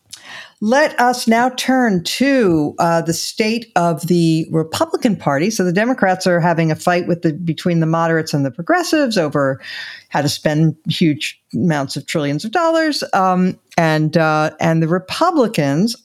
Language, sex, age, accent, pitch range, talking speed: English, female, 60-79, American, 155-225 Hz, 160 wpm